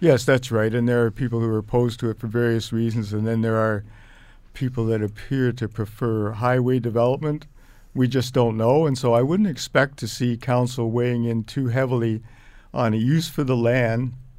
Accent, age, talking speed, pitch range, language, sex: American, 50-69, 200 wpm, 110-130 Hz, English, male